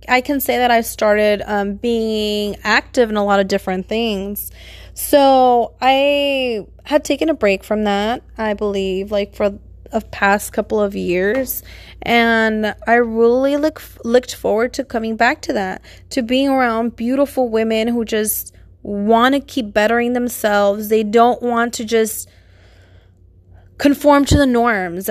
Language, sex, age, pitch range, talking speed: English, female, 20-39, 205-240 Hz, 155 wpm